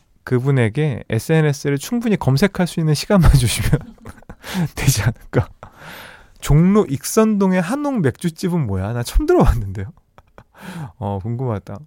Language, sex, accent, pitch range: Korean, male, native, 115-170 Hz